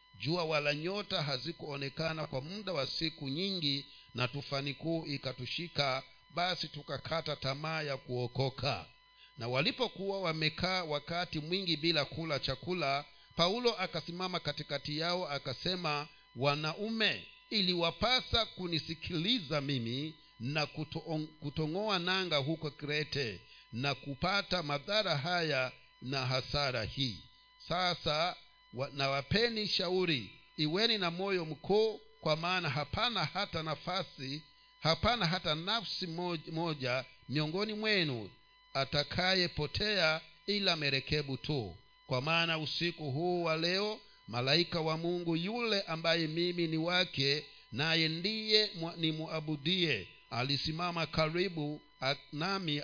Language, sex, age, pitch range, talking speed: Swahili, male, 50-69, 145-180 Hz, 105 wpm